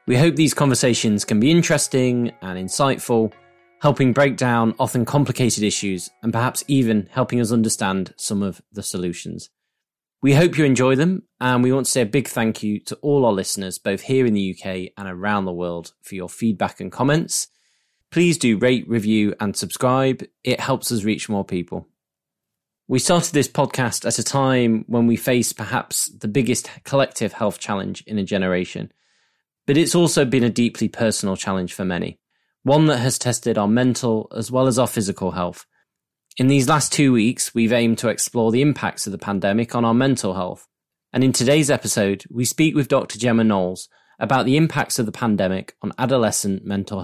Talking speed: 190 wpm